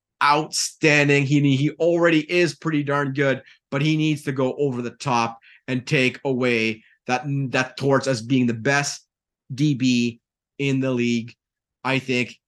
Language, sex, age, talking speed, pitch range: English, male, 30-49, 155 wpm, 125-160 Hz